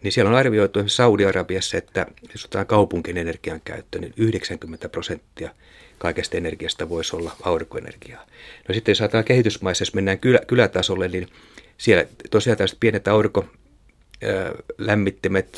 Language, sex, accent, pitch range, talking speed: Finnish, male, native, 90-105 Hz, 120 wpm